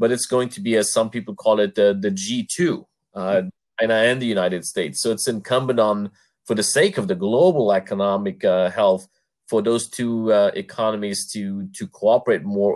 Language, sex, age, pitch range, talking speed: English, male, 30-49, 100-125 Hz, 200 wpm